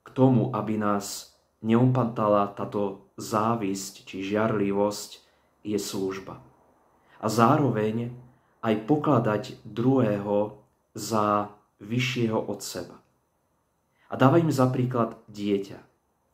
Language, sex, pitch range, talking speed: Slovak, male, 105-125 Hz, 90 wpm